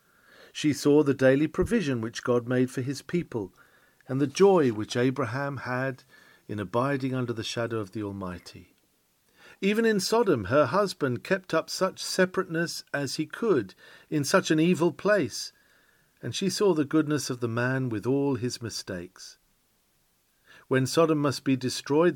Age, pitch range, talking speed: 50-69, 125-185 Hz, 160 wpm